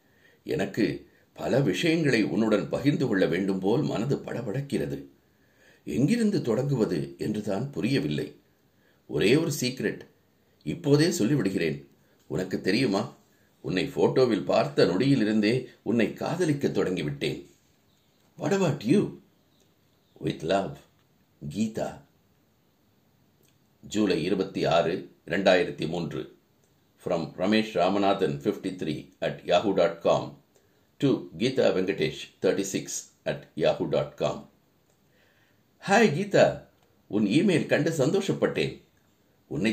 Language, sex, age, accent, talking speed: Tamil, male, 60-79, native, 65 wpm